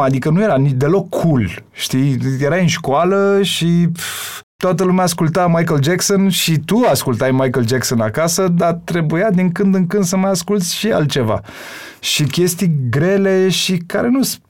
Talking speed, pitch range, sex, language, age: 170 wpm, 125-165 Hz, male, Romanian, 30-49